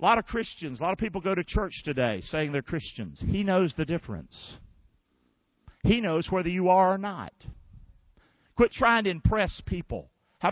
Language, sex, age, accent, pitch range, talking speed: English, male, 50-69, American, 140-195 Hz, 185 wpm